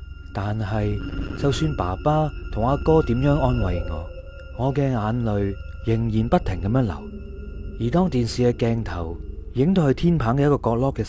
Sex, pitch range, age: male, 95-145 Hz, 30-49